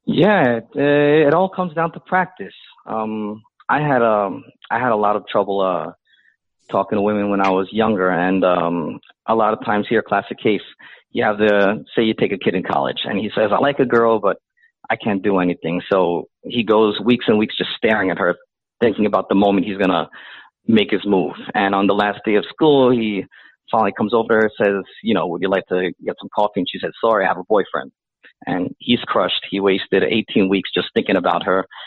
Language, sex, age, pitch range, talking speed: English, male, 30-49, 100-125 Hz, 220 wpm